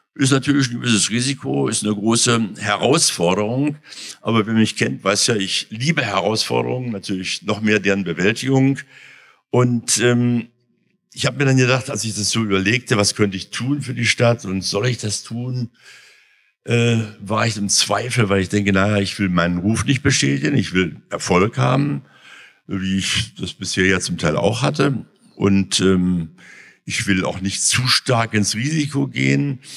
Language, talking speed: German, 175 wpm